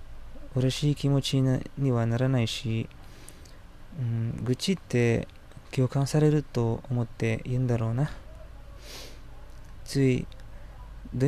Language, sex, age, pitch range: Japanese, male, 20-39, 105-135 Hz